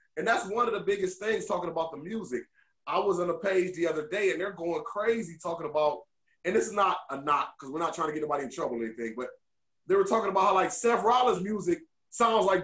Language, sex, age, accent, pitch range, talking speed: English, male, 30-49, American, 190-290 Hz, 255 wpm